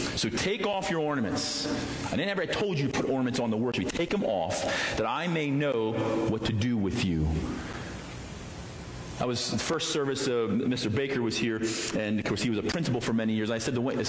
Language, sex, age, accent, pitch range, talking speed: English, male, 40-59, American, 115-175 Hz, 215 wpm